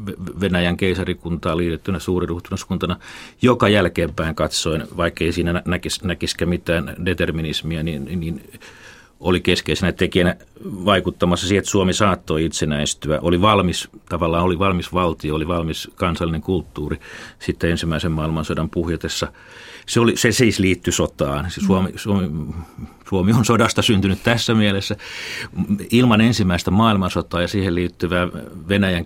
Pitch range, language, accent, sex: 85-100 Hz, Finnish, native, male